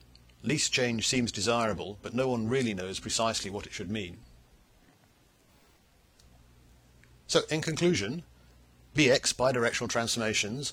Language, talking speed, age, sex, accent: English, 110 wpm, 50-69, male, British